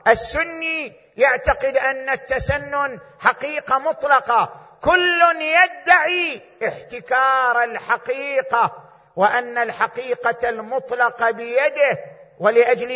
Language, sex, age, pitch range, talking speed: Arabic, male, 50-69, 220-290 Hz, 70 wpm